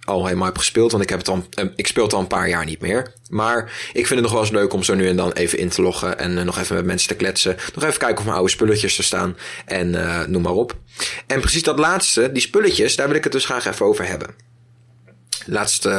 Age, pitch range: 20-39, 90-140 Hz